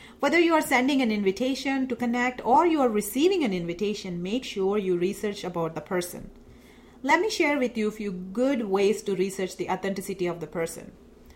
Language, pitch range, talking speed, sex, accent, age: English, 195-270 Hz, 195 wpm, female, Indian, 40-59